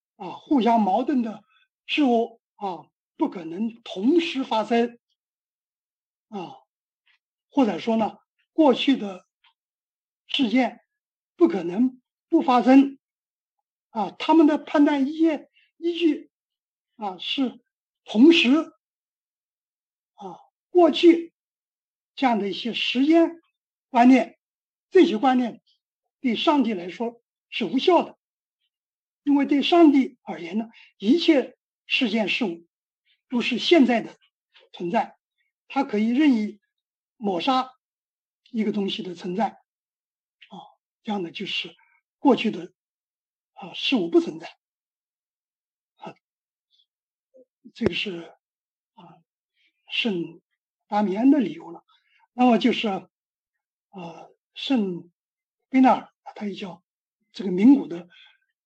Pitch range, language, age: 210-310 Hz, English, 60-79